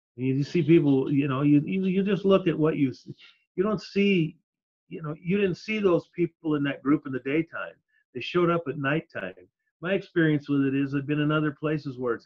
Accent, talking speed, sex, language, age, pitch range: American, 225 wpm, male, English, 40-59, 135-165 Hz